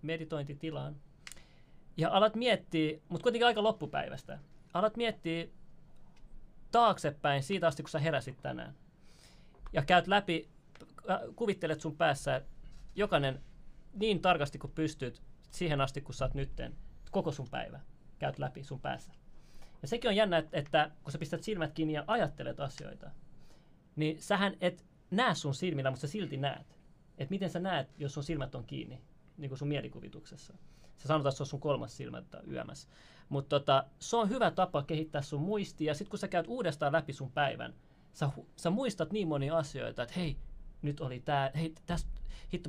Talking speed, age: 165 wpm, 30-49